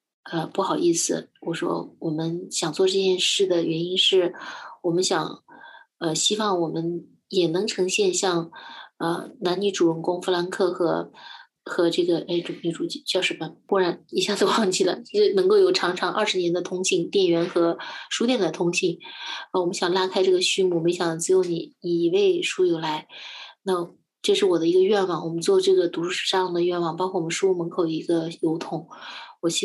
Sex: female